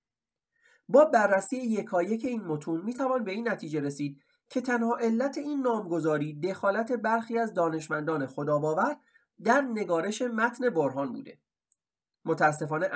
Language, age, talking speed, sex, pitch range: Persian, 30-49, 125 wpm, male, 155-240 Hz